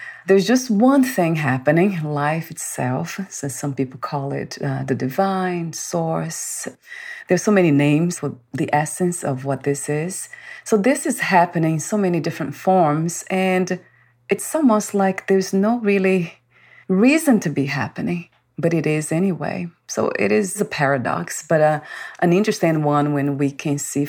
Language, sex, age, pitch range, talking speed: English, female, 30-49, 140-190 Hz, 160 wpm